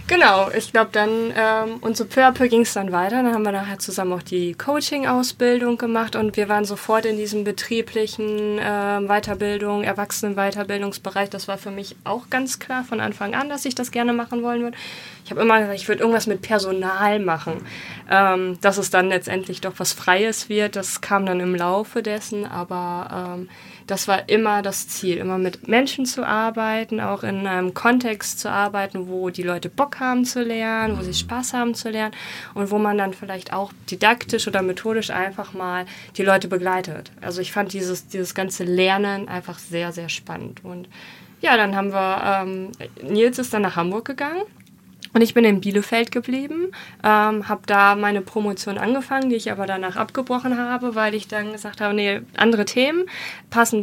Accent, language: German, German